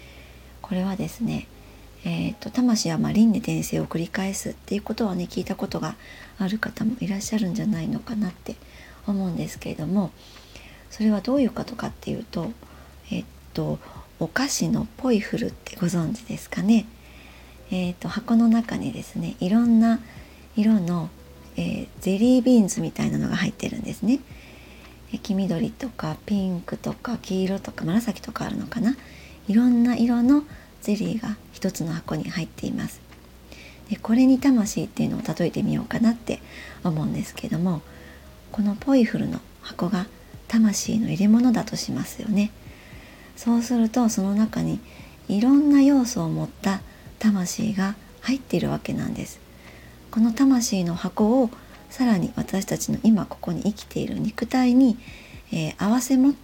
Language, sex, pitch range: Japanese, male, 180-230 Hz